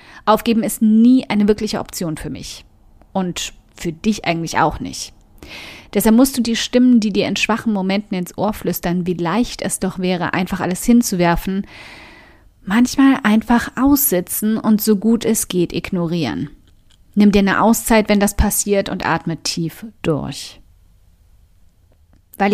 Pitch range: 175-225 Hz